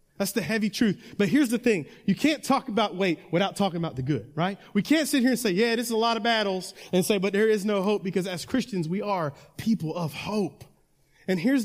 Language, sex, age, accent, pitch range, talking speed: English, male, 30-49, American, 180-235 Hz, 250 wpm